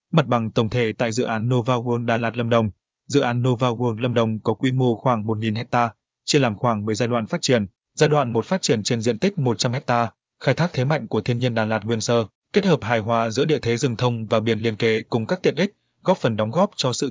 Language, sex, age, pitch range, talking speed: Vietnamese, male, 20-39, 115-135 Hz, 270 wpm